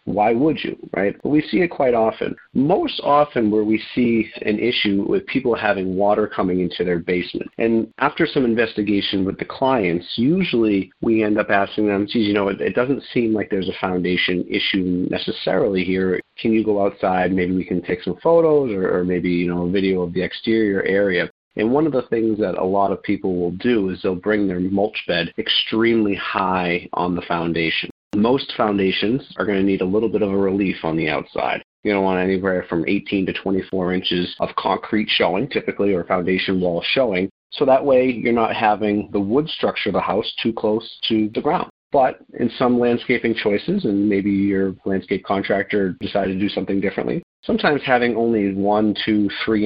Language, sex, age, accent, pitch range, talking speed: English, male, 40-59, American, 95-110 Hz, 200 wpm